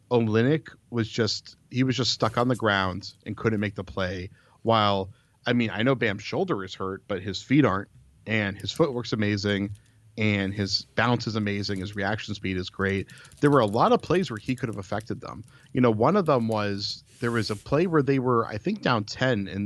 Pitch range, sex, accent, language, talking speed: 100-120 Hz, male, American, English, 220 wpm